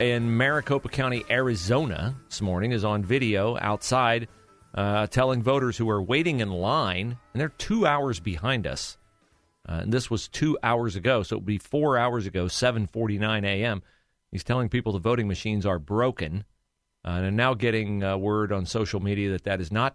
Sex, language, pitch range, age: male, English, 105-140 Hz, 40-59